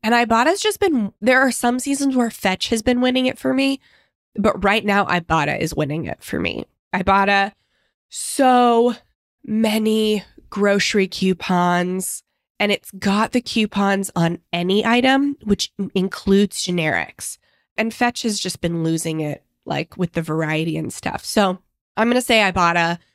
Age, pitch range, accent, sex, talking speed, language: 20-39, 175-220 Hz, American, female, 155 wpm, English